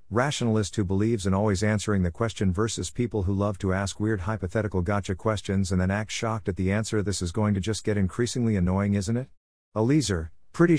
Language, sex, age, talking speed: English, male, 50-69, 205 wpm